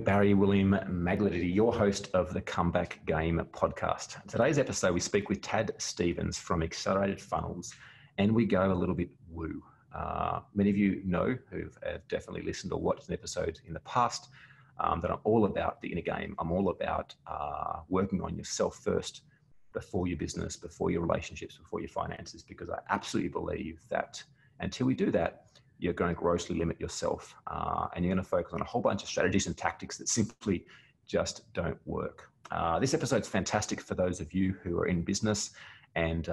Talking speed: 190 wpm